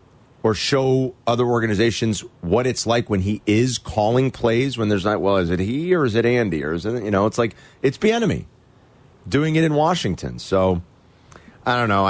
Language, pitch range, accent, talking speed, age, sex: English, 95-130 Hz, American, 205 wpm, 40-59, male